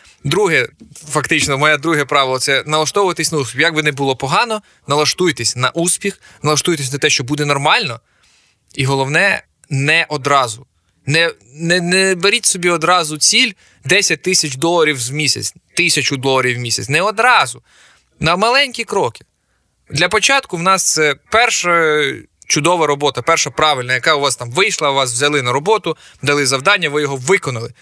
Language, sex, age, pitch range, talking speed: Ukrainian, male, 20-39, 130-165 Hz, 160 wpm